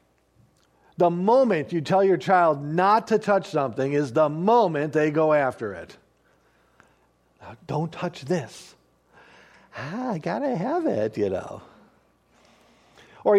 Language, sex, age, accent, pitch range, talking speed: English, male, 40-59, American, 165-220 Hz, 130 wpm